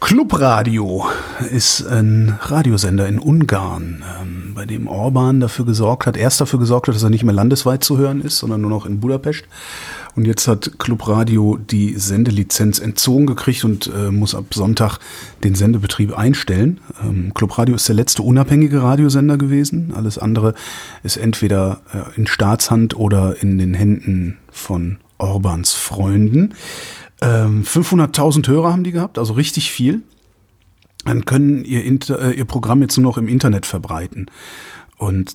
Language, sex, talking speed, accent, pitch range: German, male, 155 wpm, German, 105-135 Hz